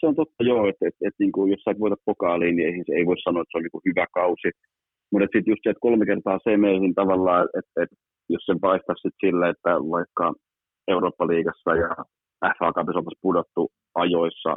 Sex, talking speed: male, 175 wpm